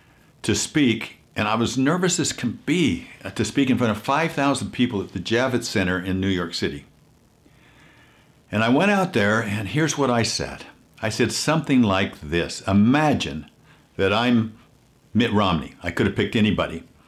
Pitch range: 95-130 Hz